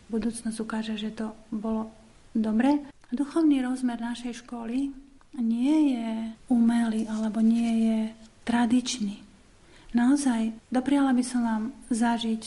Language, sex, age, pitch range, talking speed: Slovak, female, 40-59, 220-240 Hz, 110 wpm